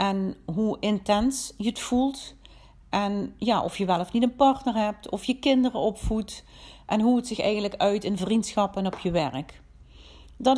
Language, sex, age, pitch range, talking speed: Dutch, female, 40-59, 170-235 Hz, 185 wpm